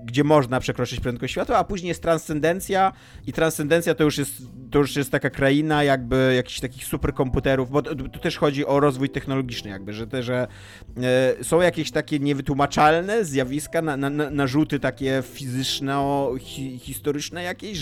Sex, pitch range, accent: male, 125-150 Hz, native